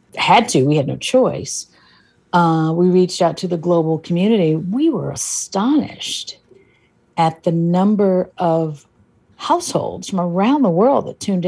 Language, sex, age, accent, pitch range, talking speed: English, female, 50-69, American, 155-190 Hz, 145 wpm